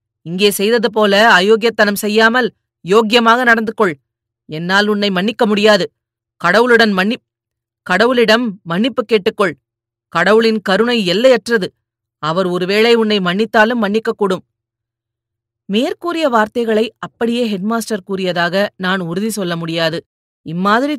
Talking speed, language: 100 wpm, Tamil